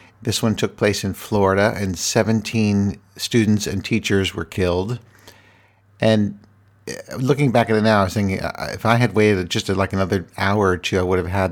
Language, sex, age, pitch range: English, male, 50-69, 95-110 Hz